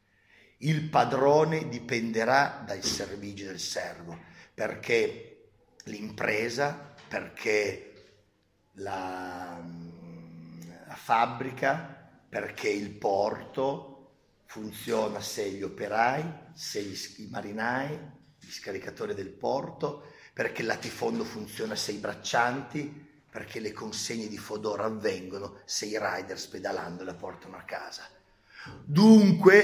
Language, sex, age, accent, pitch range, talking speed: Italian, male, 40-59, native, 105-165 Hz, 100 wpm